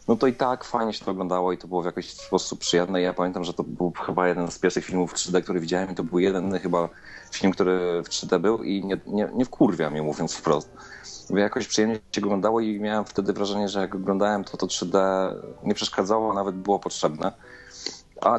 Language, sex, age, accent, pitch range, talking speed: Polish, male, 30-49, native, 90-110 Hz, 220 wpm